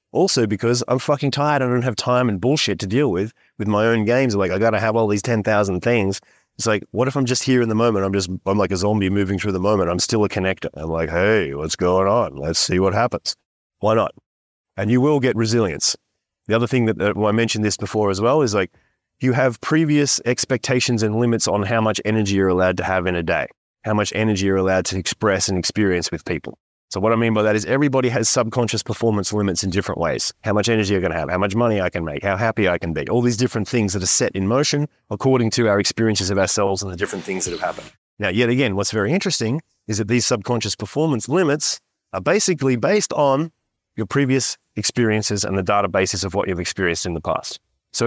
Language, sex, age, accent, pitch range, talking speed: English, male, 30-49, Australian, 100-125 Hz, 240 wpm